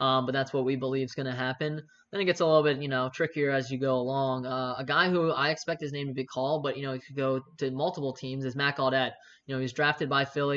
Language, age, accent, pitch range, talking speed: English, 10-29, American, 130-150 Hz, 300 wpm